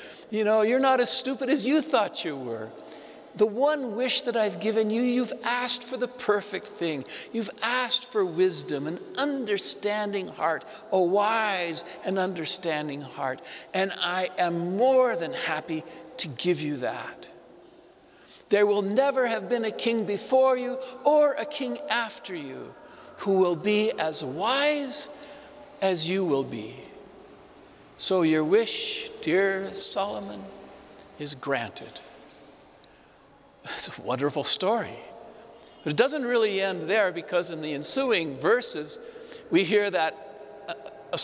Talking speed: 140 wpm